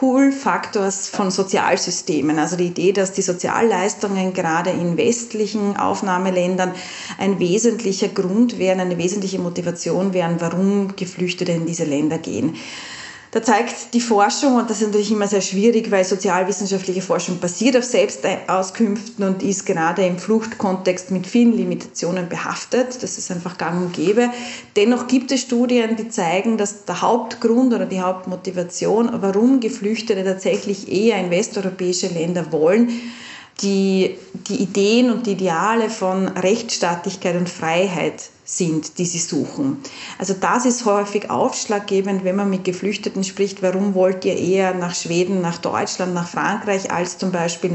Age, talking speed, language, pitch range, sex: 30-49, 145 wpm, German, 185-220 Hz, female